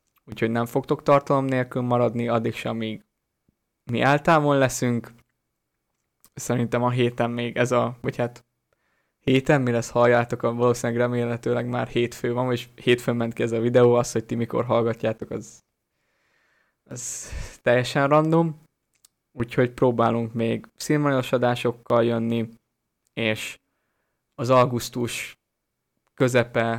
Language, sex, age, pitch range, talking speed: Hungarian, male, 20-39, 115-125 Hz, 120 wpm